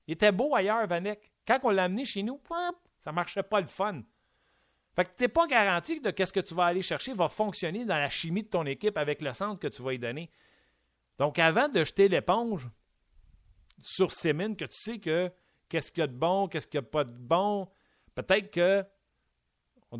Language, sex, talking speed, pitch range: French, male, 220 wpm, 115-185 Hz